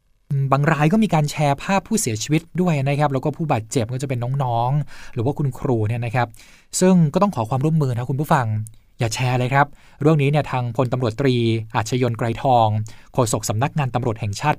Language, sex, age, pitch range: Thai, male, 20-39, 120-150 Hz